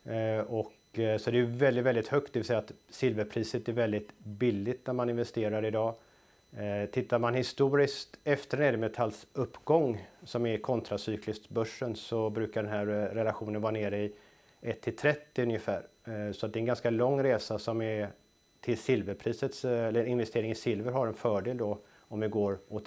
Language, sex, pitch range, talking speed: Swedish, male, 110-125 Hz, 170 wpm